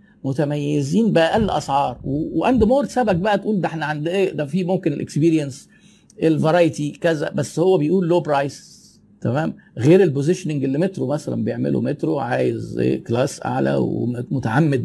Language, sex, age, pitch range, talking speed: Arabic, male, 50-69, 130-185 Hz, 145 wpm